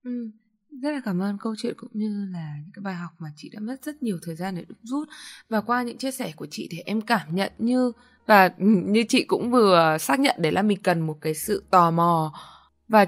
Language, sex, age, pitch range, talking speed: Vietnamese, female, 10-29, 165-225 Hz, 250 wpm